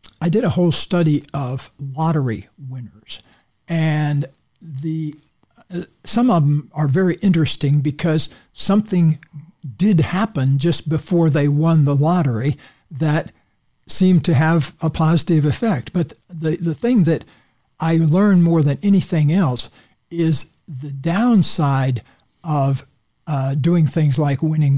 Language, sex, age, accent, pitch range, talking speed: English, male, 60-79, American, 135-165 Hz, 130 wpm